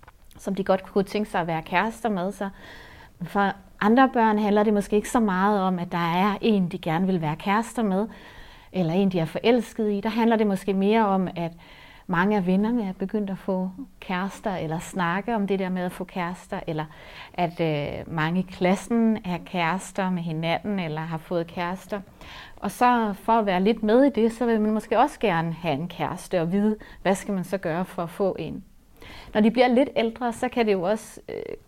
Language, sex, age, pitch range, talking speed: Danish, female, 30-49, 180-215 Hz, 215 wpm